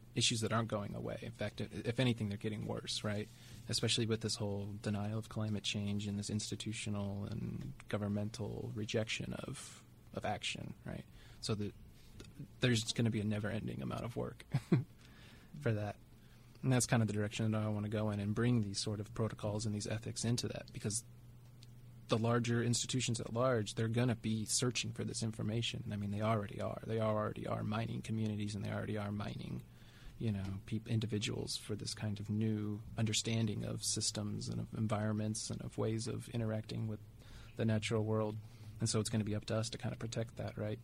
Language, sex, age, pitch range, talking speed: English, male, 20-39, 105-120 Hz, 200 wpm